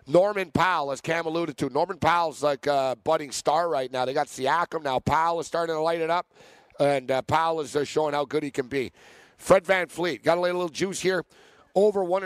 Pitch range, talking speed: 155-180 Hz, 235 wpm